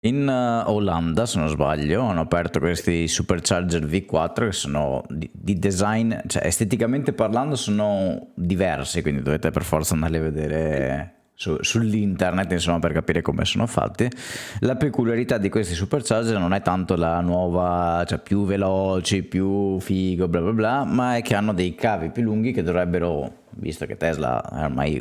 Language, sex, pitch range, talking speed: Italian, male, 80-100 Hz, 160 wpm